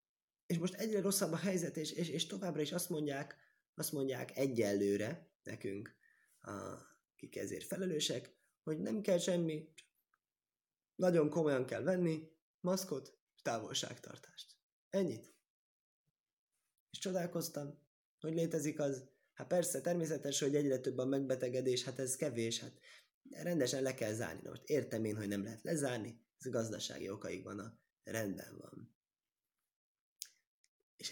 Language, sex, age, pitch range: Hungarian, male, 20-39, 110-165 Hz